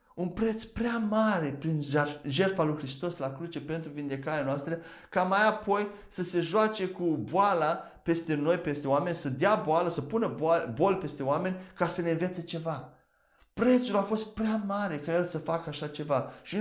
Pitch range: 155-200 Hz